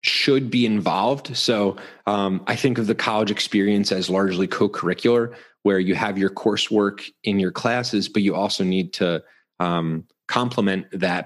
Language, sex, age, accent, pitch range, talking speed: English, male, 30-49, American, 90-105 Hz, 160 wpm